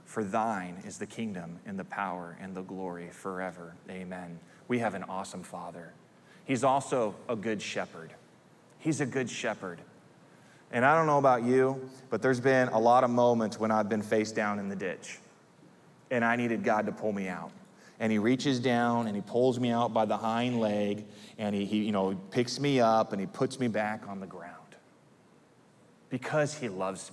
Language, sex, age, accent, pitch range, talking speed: English, male, 20-39, American, 105-145 Hz, 190 wpm